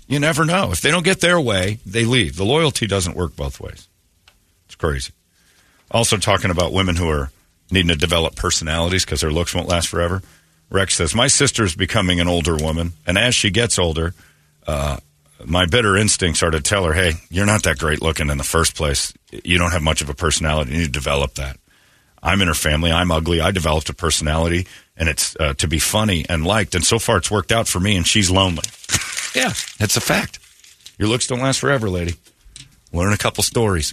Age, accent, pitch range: 50-69, American, 85-115 Hz